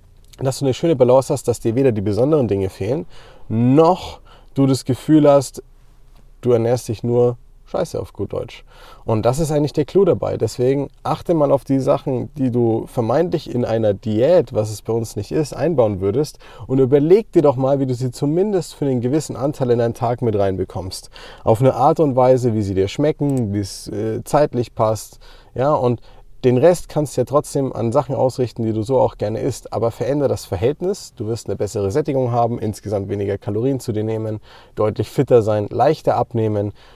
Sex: male